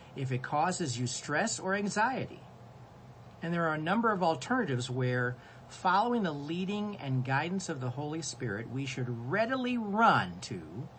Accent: American